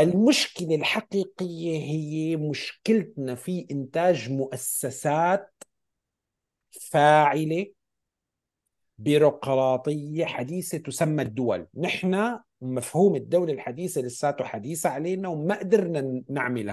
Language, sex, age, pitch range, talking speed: Arabic, male, 50-69, 130-185 Hz, 80 wpm